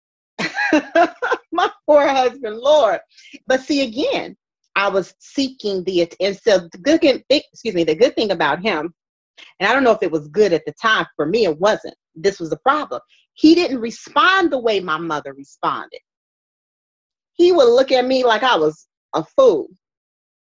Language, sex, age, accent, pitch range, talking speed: English, female, 30-49, American, 175-285 Hz, 175 wpm